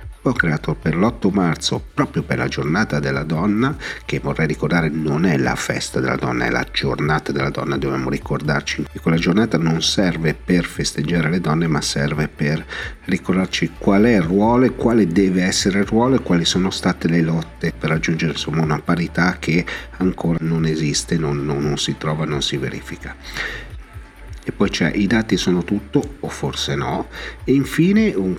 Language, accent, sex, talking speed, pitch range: Italian, native, male, 180 wpm, 75-95 Hz